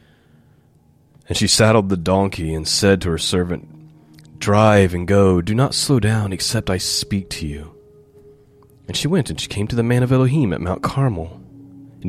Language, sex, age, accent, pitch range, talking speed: English, male, 30-49, American, 85-135 Hz, 185 wpm